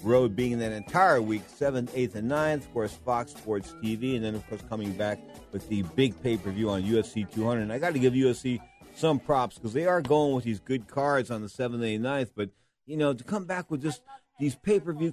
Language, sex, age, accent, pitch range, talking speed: English, male, 50-69, American, 115-150 Hz, 230 wpm